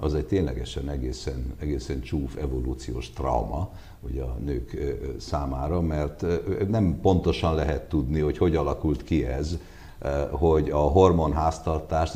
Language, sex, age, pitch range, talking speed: Hungarian, male, 60-79, 70-95 Hz, 115 wpm